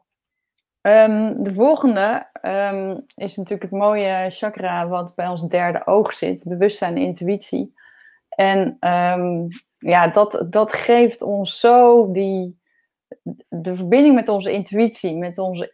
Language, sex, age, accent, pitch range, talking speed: Dutch, female, 20-39, Dutch, 180-230 Hz, 130 wpm